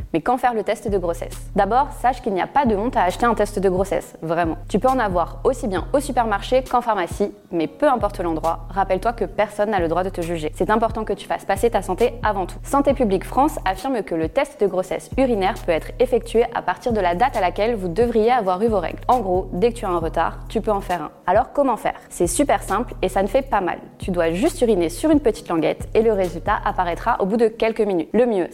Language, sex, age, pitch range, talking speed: French, female, 20-39, 185-240 Hz, 265 wpm